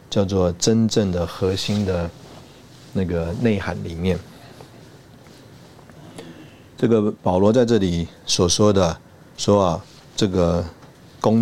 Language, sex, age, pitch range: Chinese, male, 50-69, 85-110 Hz